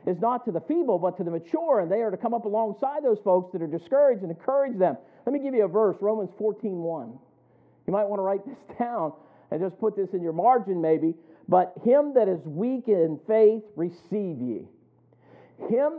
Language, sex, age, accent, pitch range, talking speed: English, male, 50-69, American, 195-265 Hz, 215 wpm